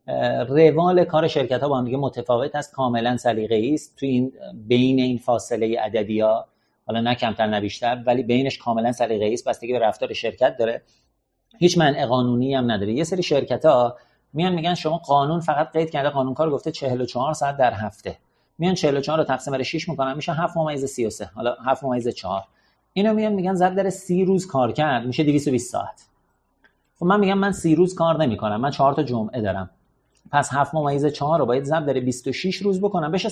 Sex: male